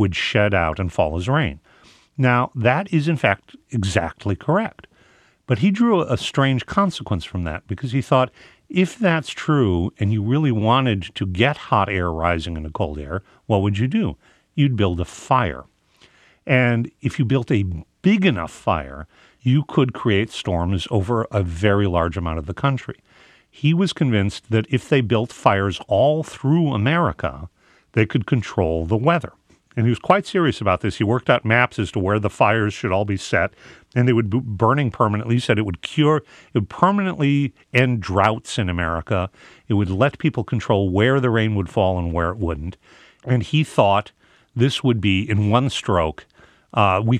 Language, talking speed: English, 185 wpm